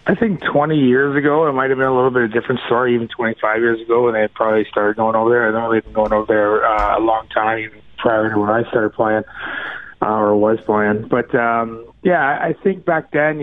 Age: 20-39